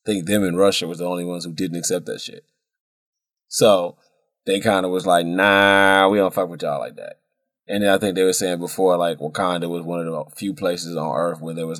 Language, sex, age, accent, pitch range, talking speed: English, male, 20-39, American, 85-100 Hz, 250 wpm